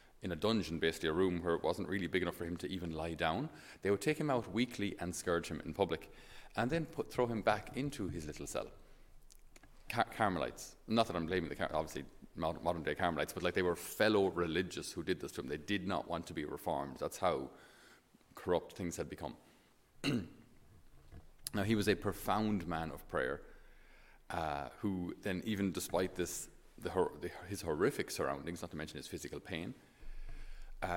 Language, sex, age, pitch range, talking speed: English, male, 30-49, 85-105 Hz, 195 wpm